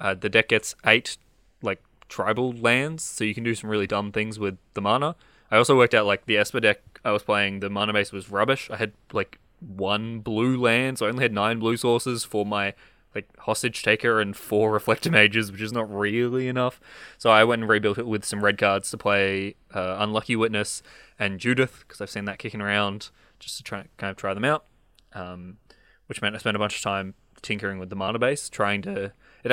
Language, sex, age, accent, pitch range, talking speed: English, male, 20-39, Australian, 100-115 Hz, 225 wpm